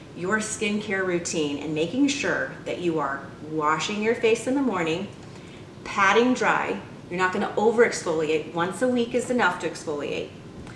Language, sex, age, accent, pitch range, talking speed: English, female, 30-49, American, 170-225 Hz, 165 wpm